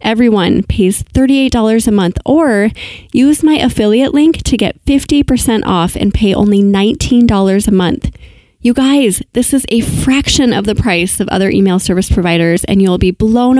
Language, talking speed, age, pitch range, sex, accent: English, 170 wpm, 20-39, 195-240 Hz, female, American